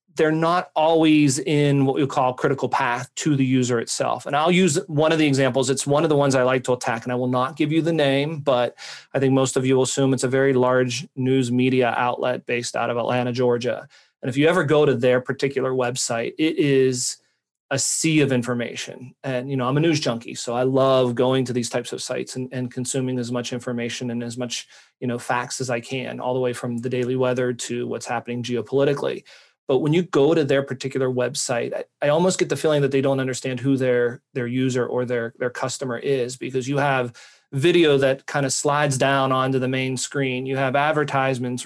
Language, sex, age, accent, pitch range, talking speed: English, male, 30-49, American, 125-145 Hz, 230 wpm